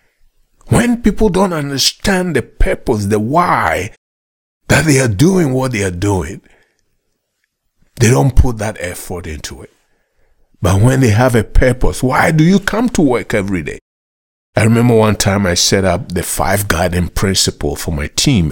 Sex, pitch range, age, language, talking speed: male, 100-155 Hz, 60-79, English, 165 wpm